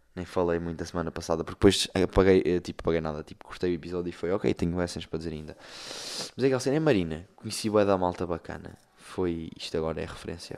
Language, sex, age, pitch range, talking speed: Portuguese, male, 20-39, 85-110 Hz, 245 wpm